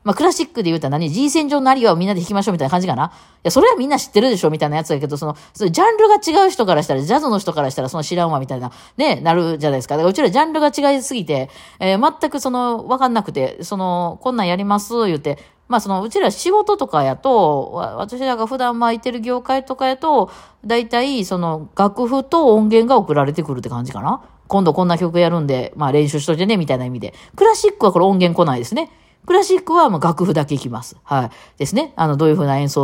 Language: Japanese